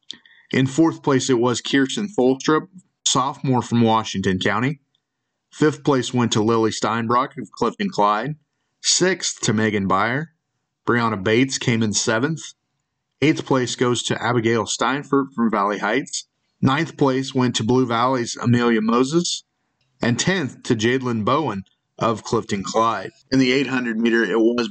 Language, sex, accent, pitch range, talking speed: English, male, American, 110-135 Hz, 145 wpm